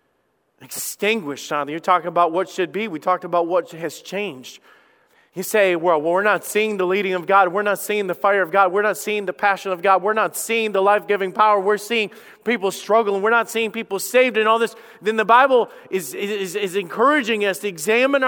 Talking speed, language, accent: 225 wpm, English, American